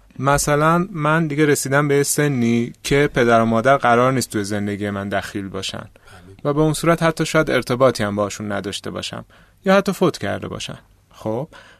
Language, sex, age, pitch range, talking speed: Persian, male, 30-49, 105-150 Hz, 180 wpm